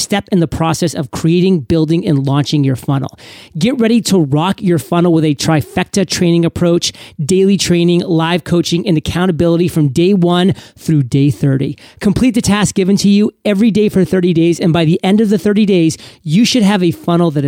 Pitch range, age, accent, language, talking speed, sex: 160-200 Hz, 30-49, American, English, 205 wpm, male